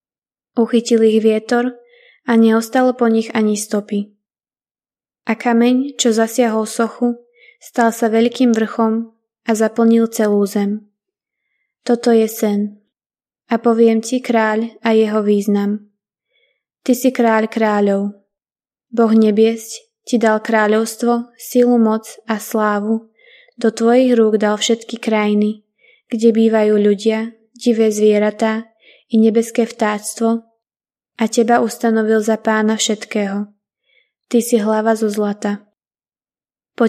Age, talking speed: 20-39, 115 wpm